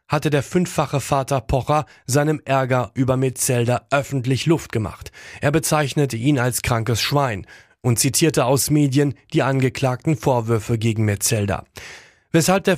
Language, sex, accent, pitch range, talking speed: German, male, German, 120-145 Hz, 135 wpm